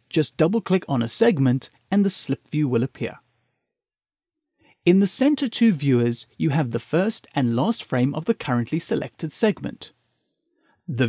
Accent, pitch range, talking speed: British, 135-215 Hz, 155 wpm